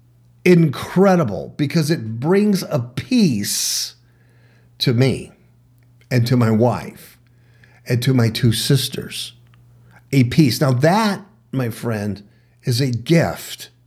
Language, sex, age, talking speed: English, male, 50-69, 115 wpm